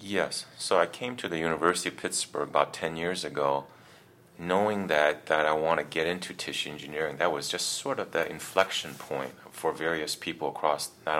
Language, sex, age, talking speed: English, male, 30-49, 195 wpm